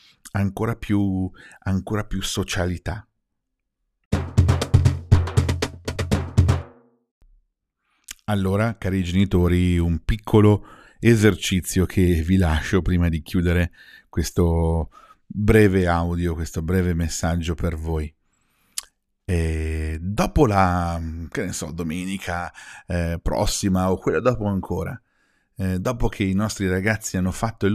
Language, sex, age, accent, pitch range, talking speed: Italian, male, 50-69, native, 85-105 Hz, 100 wpm